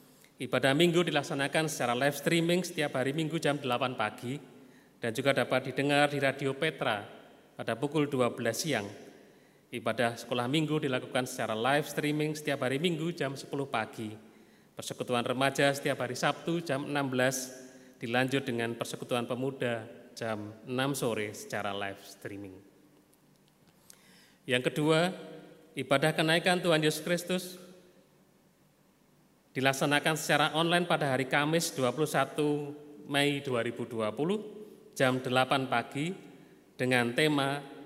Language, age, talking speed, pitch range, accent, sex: Indonesian, 30-49, 115 wpm, 120-150 Hz, native, male